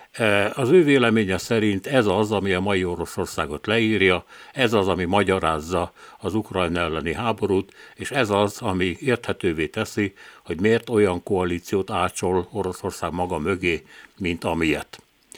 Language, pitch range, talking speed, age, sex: Hungarian, 90-110 Hz, 135 wpm, 60-79, male